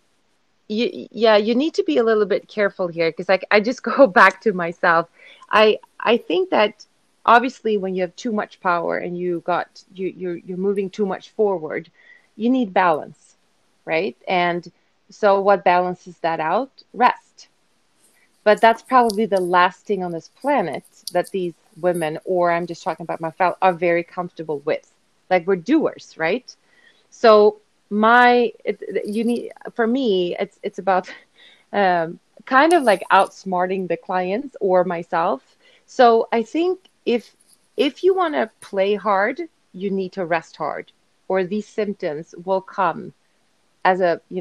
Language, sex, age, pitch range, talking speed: English, female, 30-49, 180-230 Hz, 160 wpm